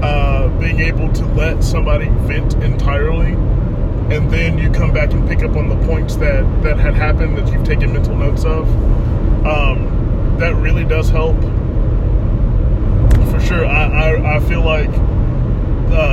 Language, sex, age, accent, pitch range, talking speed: English, male, 20-39, American, 105-115 Hz, 155 wpm